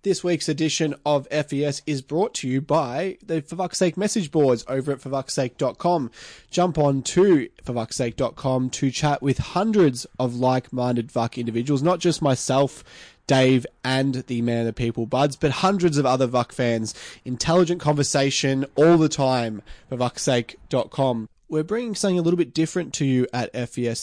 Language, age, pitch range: English, 20-39, 120-155 Hz